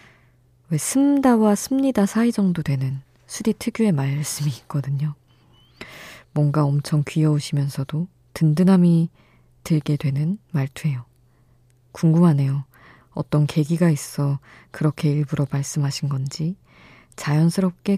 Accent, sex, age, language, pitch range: native, female, 20-39, Korean, 125-165 Hz